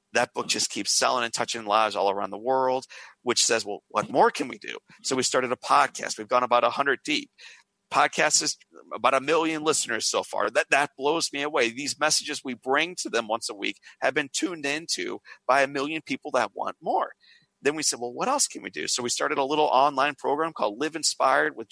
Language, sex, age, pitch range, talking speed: English, male, 40-59, 120-155 Hz, 225 wpm